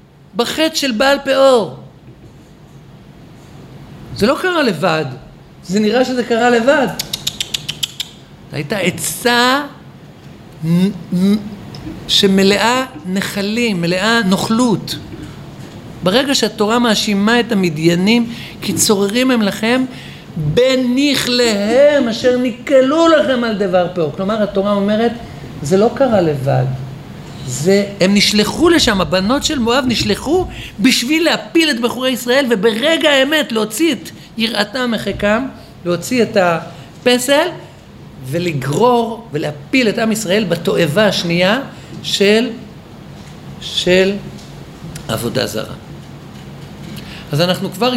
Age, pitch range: 50-69, 180-250 Hz